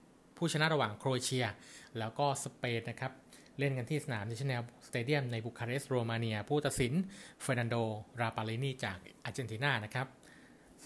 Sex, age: male, 20-39